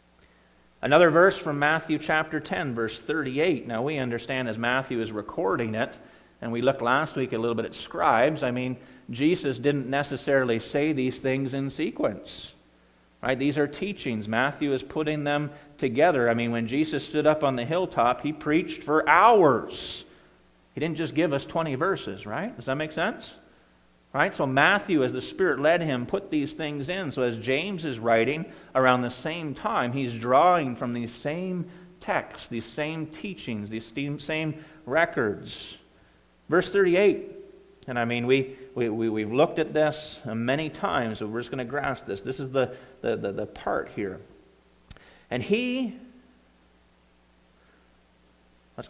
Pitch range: 115-155 Hz